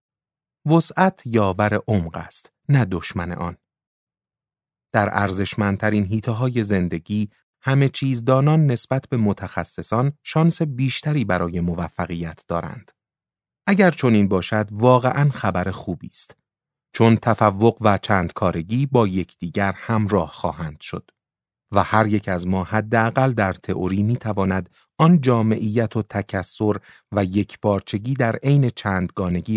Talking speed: 120 wpm